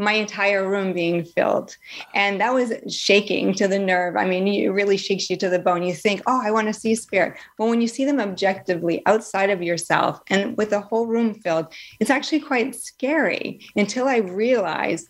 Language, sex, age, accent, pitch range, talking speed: English, female, 30-49, American, 180-220 Hz, 205 wpm